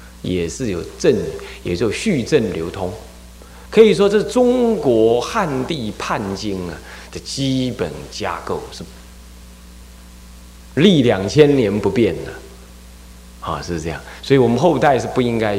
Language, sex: Chinese, male